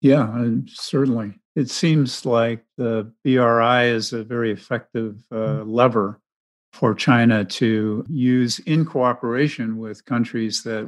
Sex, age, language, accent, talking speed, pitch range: male, 50-69, English, American, 120 wpm, 110-130 Hz